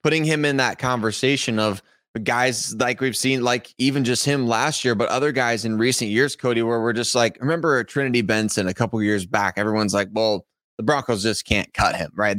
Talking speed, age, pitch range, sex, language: 215 wpm, 20-39, 110-130 Hz, male, English